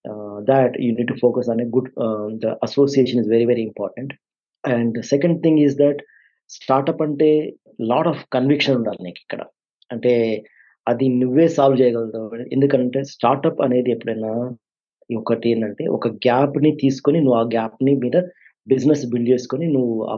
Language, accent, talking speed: Telugu, native, 160 wpm